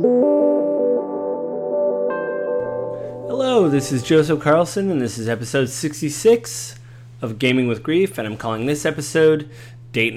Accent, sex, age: American, male, 30-49